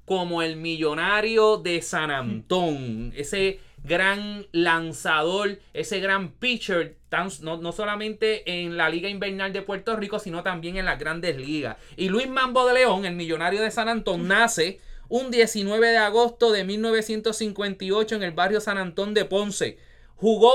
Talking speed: 155 wpm